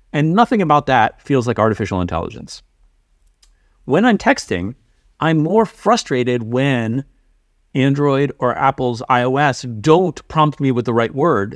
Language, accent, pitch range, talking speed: English, American, 120-165 Hz, 135 wpm